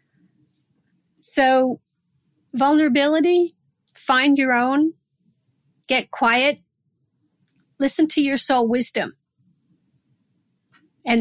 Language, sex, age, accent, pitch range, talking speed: English, female, 50-69, American, 220-280 Hz, 70 wpm